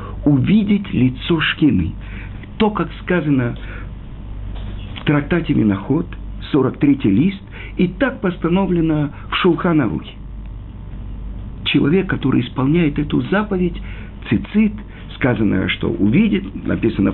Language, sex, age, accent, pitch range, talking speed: Russian, male, 50-69, native, 100-150 Hz, 90 wpm